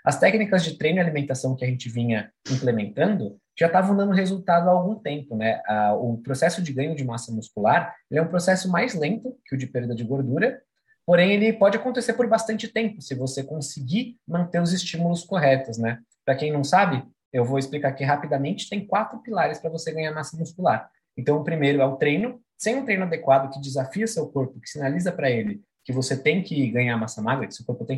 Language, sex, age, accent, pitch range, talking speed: Portuguese, male, 20-39, Brazilian, 130-180 Hz, 210 wpm